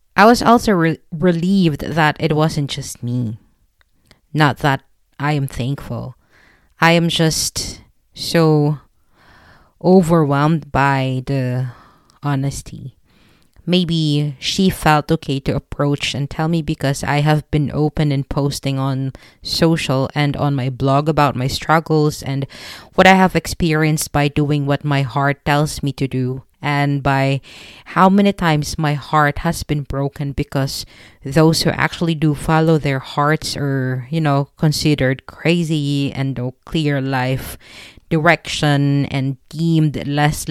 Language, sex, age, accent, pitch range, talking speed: English, female, 20-39, Filipino, 135-155 Hz, 135 wpm